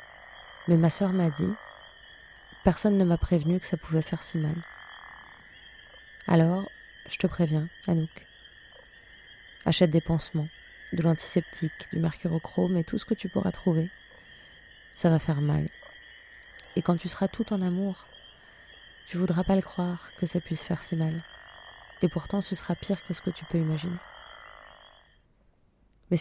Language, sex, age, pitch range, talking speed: French, female, 30-49, 155-180 Hz, 155 wpm